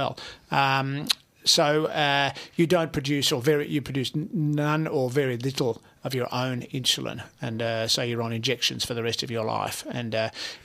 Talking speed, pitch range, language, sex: 180 wpm, 130-155 Hz, English, male